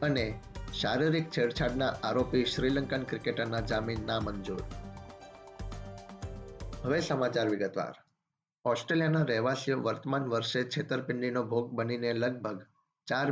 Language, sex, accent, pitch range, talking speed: Gujarati, male, native, 115-130 Hz, 50 wpm